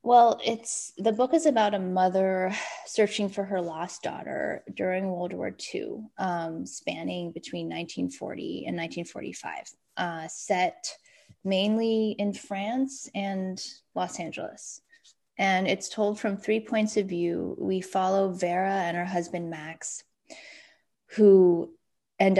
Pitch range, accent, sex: 165-205 Hz, American, female